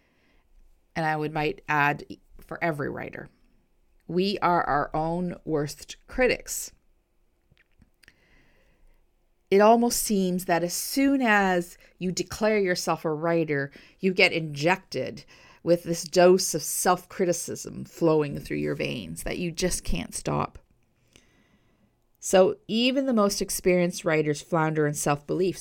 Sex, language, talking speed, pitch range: female, English, 120 wpm, 150-190 Hz